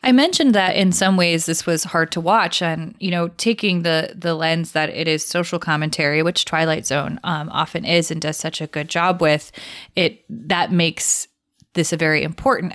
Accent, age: American, 20-39